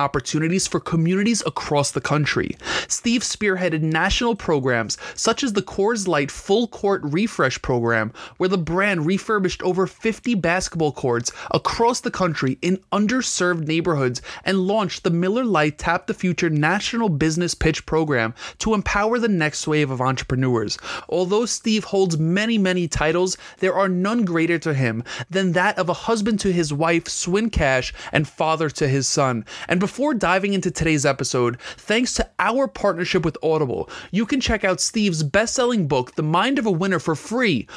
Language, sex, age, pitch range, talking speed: English, male, 20-39, 145-195 Hz, 170 wpm